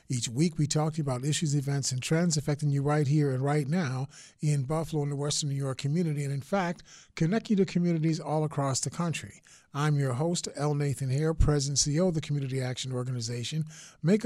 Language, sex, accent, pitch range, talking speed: English, male, American, 135-160 Hz, 215 wpm